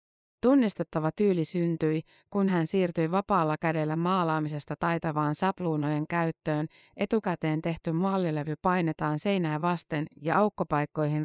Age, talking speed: 30-49, 105 wpm